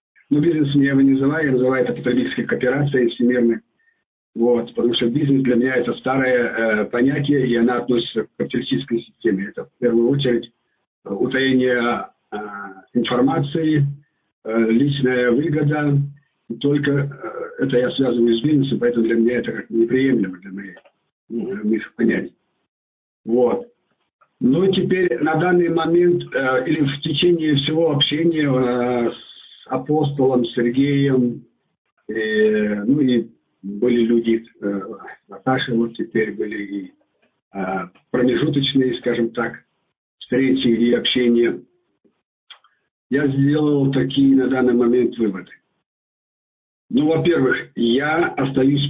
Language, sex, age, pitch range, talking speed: Russian, male, 50-69, 120-140 Hz, 125 wpm